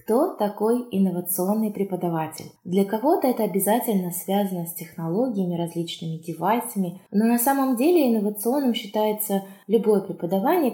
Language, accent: Russian, native